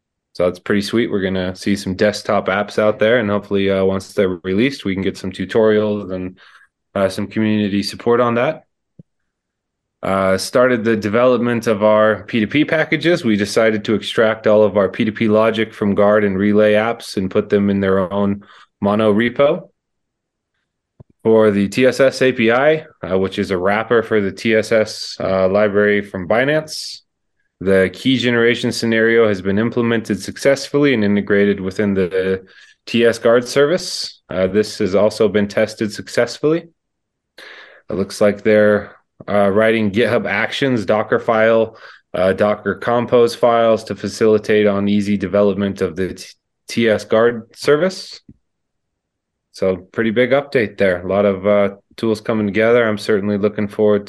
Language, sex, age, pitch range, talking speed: English, male, 20-39, 100-115 Hz, 155 wpm